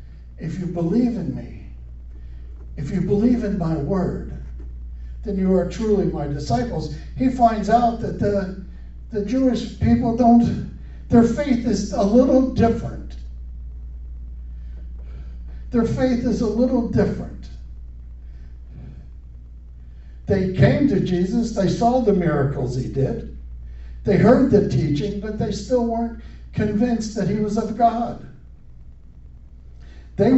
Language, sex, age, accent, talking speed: English, male, 60-79, American, 125 wpm